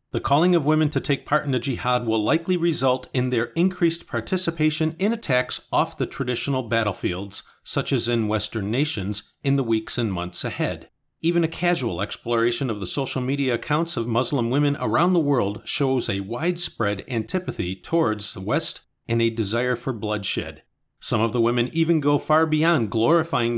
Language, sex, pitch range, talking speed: English, male, 115-150 Hz, 180 wpm